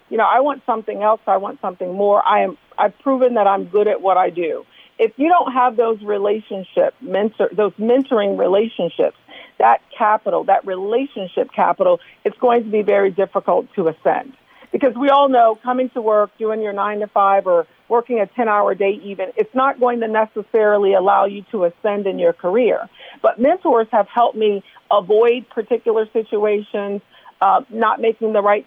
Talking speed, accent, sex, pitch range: 180 wpm, American, female, 195-245 Hz